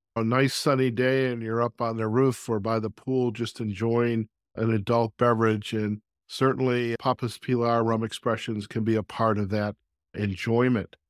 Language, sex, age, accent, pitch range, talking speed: English, male, 50-69, American, 110-130 Hz, 175 wpm